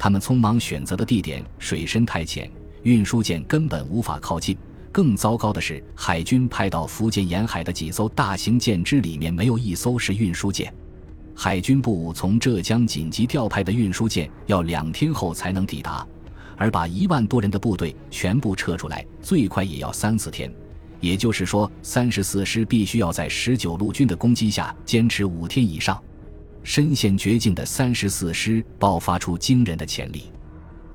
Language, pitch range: Chinese, 80-115 Hz